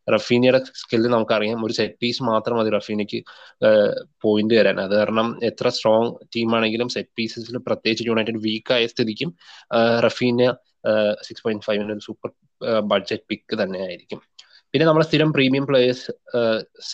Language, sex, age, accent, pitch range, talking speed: Malayalam, male, 20-39, native, 110-125 Hz, 130 wpm